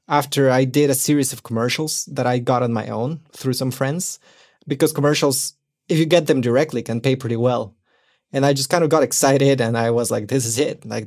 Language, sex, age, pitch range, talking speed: English, male, 20-39, 120-145 Hz, 230 wpm